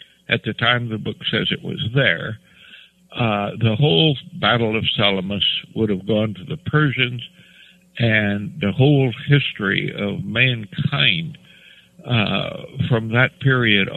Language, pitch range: English, 115-165 Hz